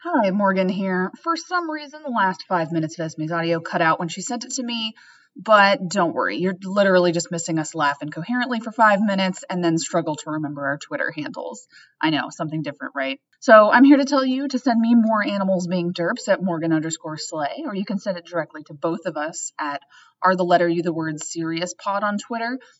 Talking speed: 225 wpm